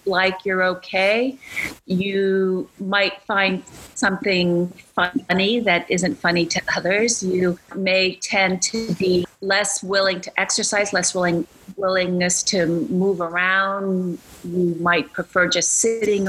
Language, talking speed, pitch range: English, 120 wpm, 175-200 Hz